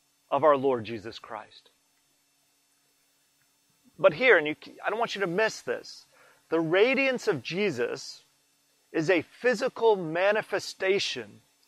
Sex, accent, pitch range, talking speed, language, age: male, American, 150-215 Hz, 125 wpm, English, 40-59